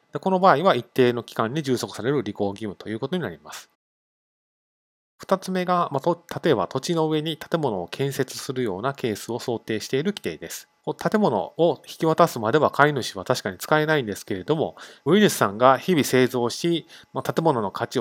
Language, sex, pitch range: Japanese, male, 115-165 Hz